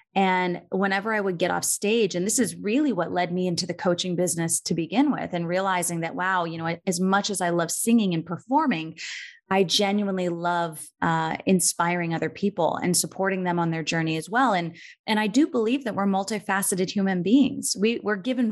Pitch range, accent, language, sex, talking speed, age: 170-210 Hz, American, English, female, 205 wpm, 30-49